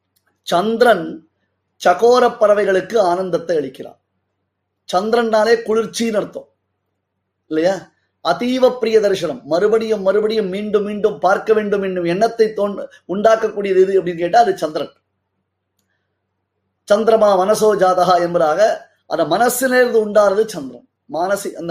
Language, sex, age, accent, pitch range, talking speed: Tamil, male, 20-39, native, 155-220 Hz, 100 wpm